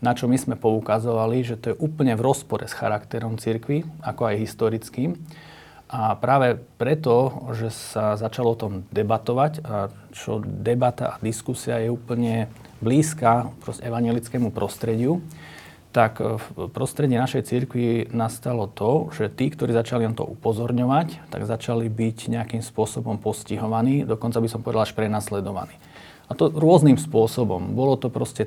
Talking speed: 145 wpm